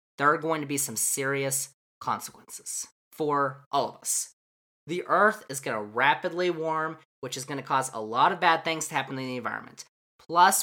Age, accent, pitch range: 20-39, American, 140-185 Hz